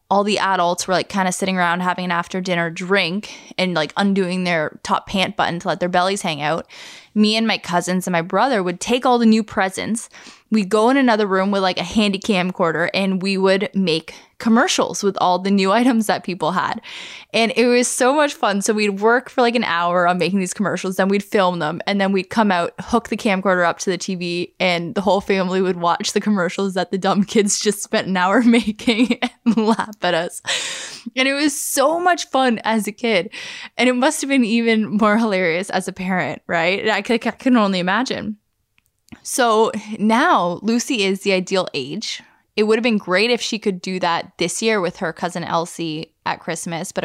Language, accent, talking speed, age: English, American, 215 wpm, 10-29